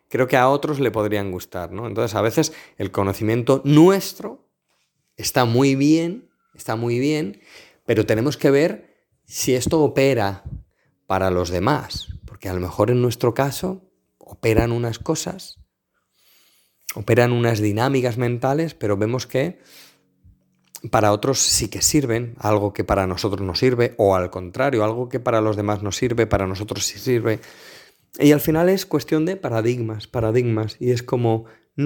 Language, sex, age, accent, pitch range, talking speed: Spanish, male, 30-49, Spanish, 105-135 Hz, 155 wpm